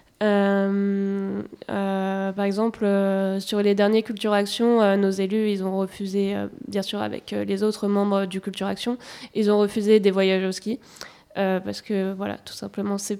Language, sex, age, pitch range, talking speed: French, female, 20-39, 195-210 Hz, 185 wpm